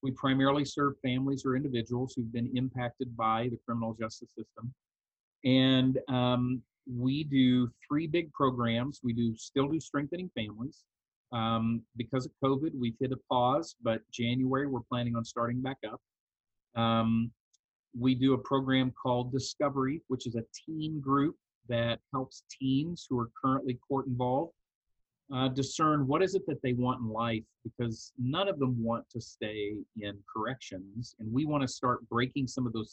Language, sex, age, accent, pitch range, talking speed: English, male, 40-59, American, 115-130 Hz, 165 wpm